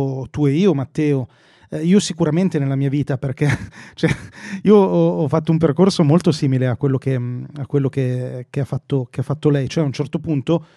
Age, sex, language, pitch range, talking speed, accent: 30-49, male, Italian, 145-205 Hz, 160 wpm, native